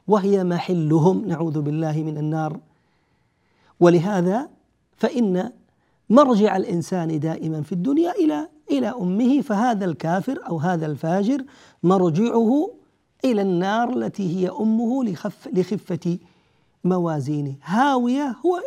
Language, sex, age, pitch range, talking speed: Arabic, male, 50-69, 170-220 Hz, 100 wpm